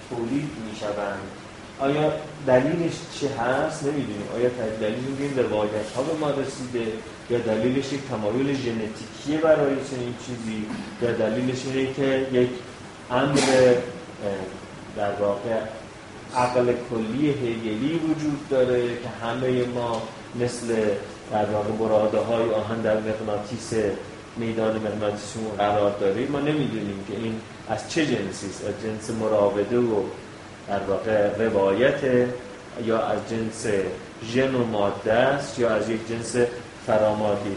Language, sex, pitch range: Persian, male, 110-135 Hz